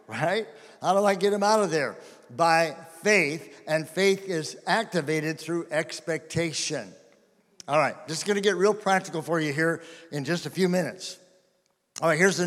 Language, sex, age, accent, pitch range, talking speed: English, male, 60-79, American, 160-200 Hz, 180 wpm